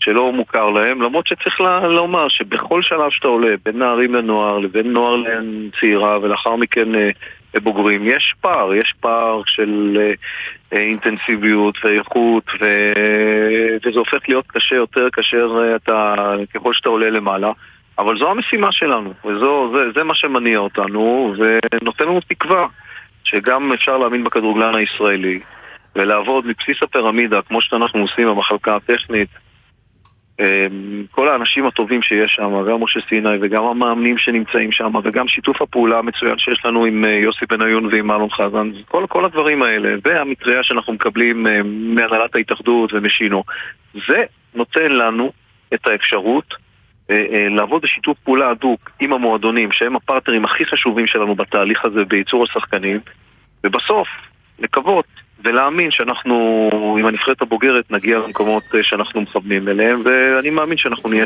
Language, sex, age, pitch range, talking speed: Hebrew, male, 40-59, 105-120 Hz, 140 wpm